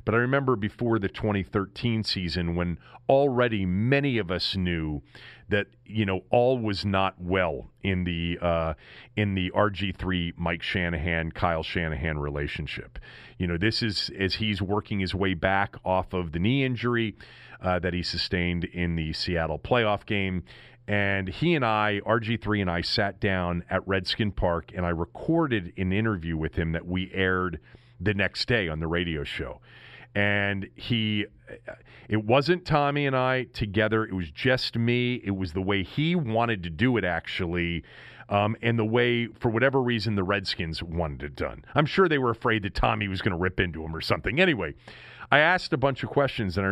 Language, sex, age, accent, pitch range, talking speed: English, male, 40-59, American, 90-120 Hz, 180 wpm